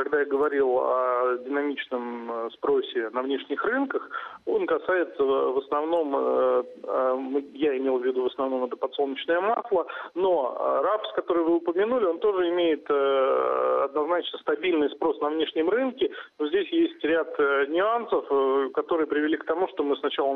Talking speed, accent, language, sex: 140 wpm, native, Russian, male